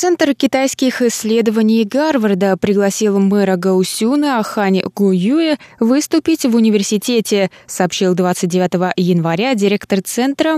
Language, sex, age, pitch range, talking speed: Russian, female, 20-39, 195-255 Hz, 95 wpm